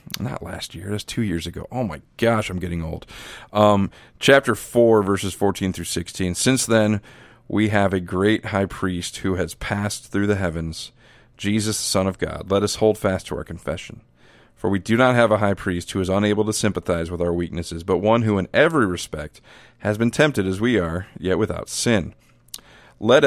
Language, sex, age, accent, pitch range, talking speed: English, male, 40-59, American, 90-105 Hz, 200 wpm